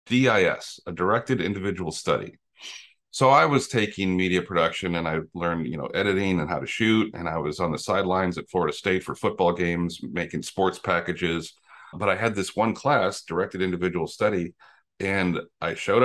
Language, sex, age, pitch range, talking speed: English, male, 40-59, 85-110 Hz, 180 wpm